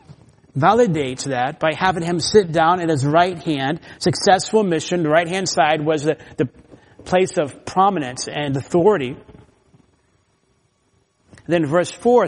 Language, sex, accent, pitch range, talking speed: English, male, American, 145-185 Hz, 135 wpm